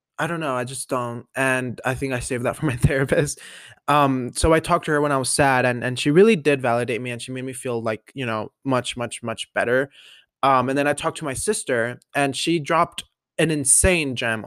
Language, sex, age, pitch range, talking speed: English, male, 20-39, 130-160 Hz, 240 wpm